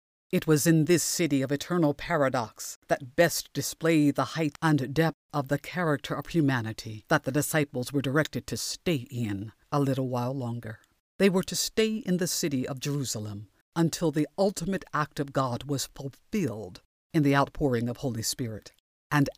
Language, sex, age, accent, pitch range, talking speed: English, female, 60-79, American, 125-180 Hz, 175 wpm